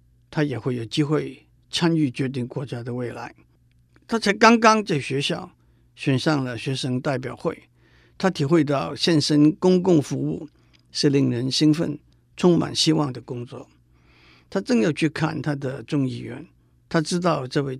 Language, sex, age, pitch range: Chinese, male, 50-69, 120-155 Hz